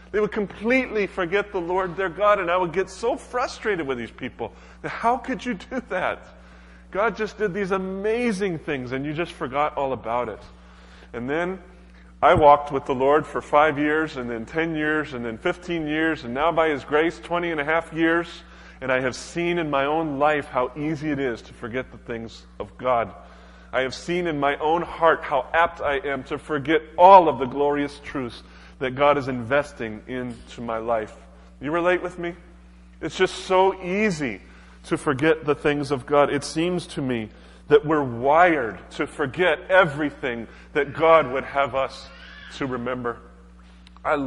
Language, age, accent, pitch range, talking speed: English, 30-49, American, 120-165 Hz, 185 wpm